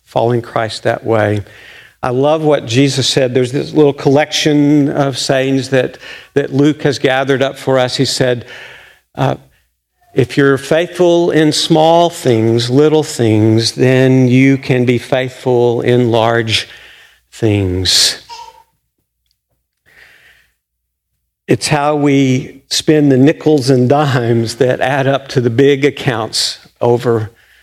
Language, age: English, 50-69